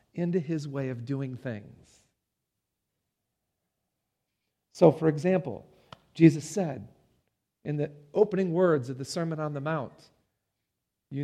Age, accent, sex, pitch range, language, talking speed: 40-59, American, male, 135-165 Hz, English, 115 wpm